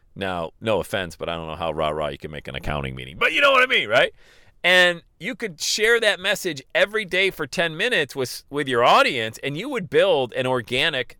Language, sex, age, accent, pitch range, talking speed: English, male, 40-59, American, 125-185 Hz, 230 wpm